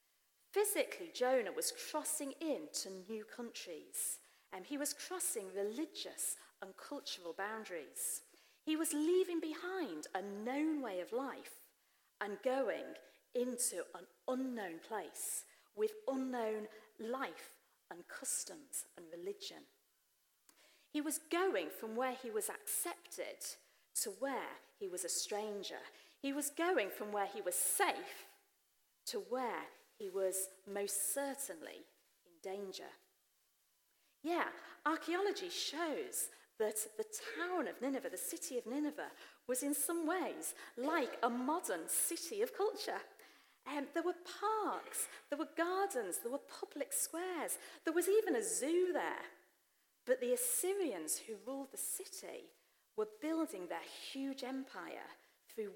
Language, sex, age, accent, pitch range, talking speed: English, female, 40-59, British, 250-390 Hz, 130 wpm